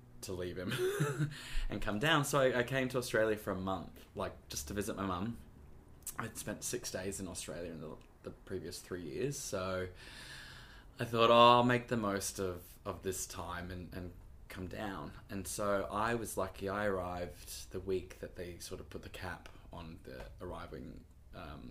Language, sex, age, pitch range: English, male, 20-39, 90-110 Hz